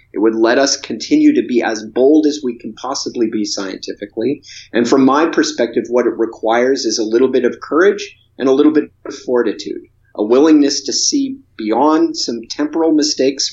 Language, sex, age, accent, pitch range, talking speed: English, male, 30-49, American, 110-150 Hz, 185 wpm